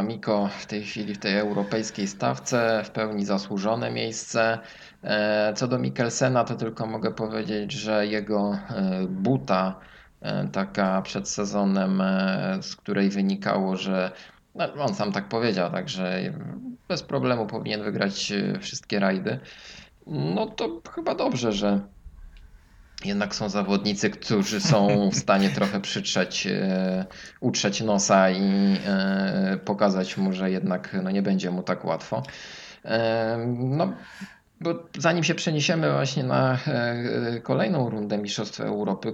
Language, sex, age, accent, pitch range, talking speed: Polish, male, 20-39, native, 95-115 Hz, 125 wpm